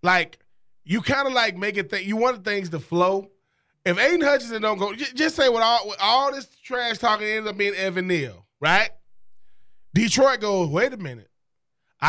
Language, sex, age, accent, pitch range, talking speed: English, male, 20-39, American, 180-230 Hz, 205 wpm